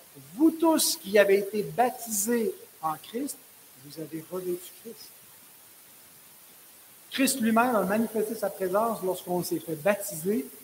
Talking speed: 135 wpm